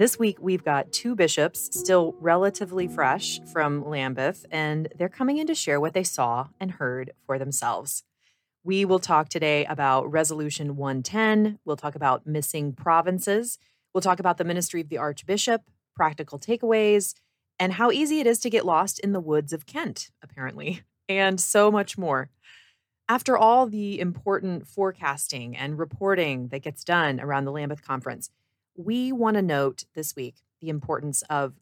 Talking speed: 165 wpm